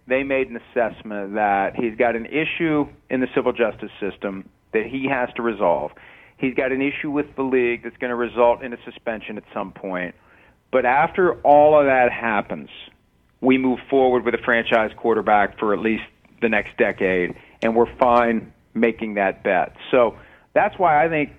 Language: English